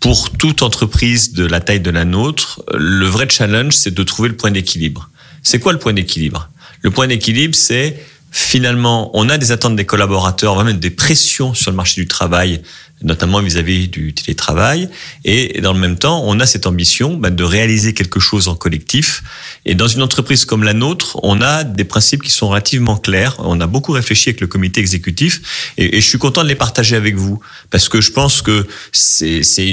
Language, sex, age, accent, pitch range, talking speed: French, male, 30-49, French, 90-125 Hz, 205 wpm